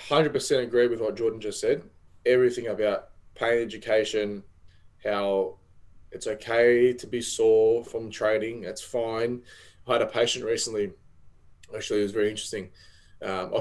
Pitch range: 95-140 Hz